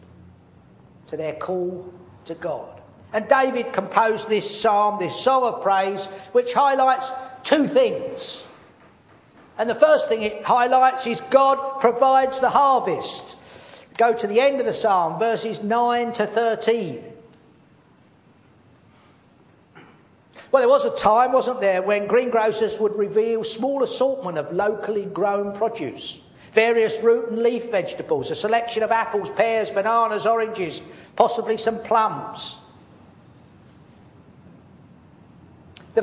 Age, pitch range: 50-69, 210-255 Hz